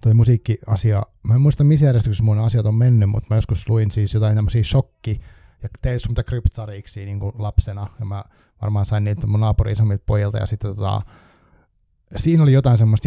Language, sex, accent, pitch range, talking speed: Finnish, male, native, 105-120 Hz, 185 wpm